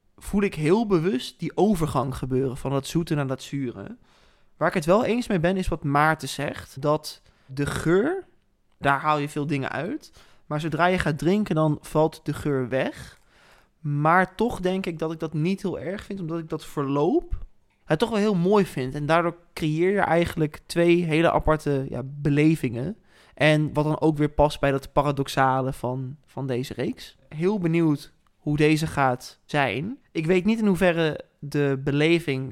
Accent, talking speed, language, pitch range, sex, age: Dutch, 185 wpm, Dutch, 140-170 Hz, male, 20-39